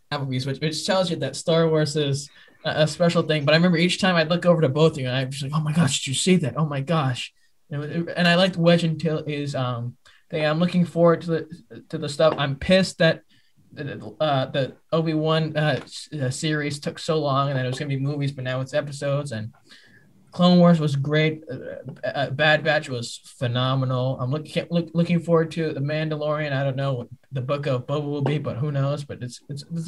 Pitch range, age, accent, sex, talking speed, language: 130-160 Hz, 20-39, American, male, 230 wpm, English